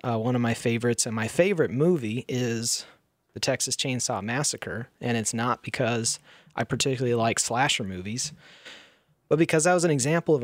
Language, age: English, 30-49